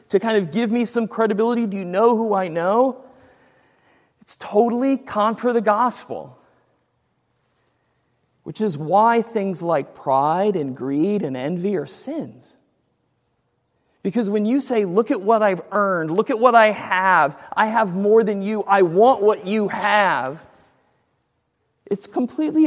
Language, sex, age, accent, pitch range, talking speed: English, male, 40-59, American, 195-240 Hz, 150 wpm